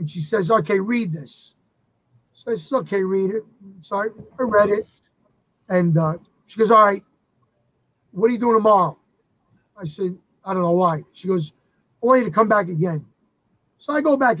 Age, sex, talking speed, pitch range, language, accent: 30-49, male, 190 wpm, 165-220 Hz, English, American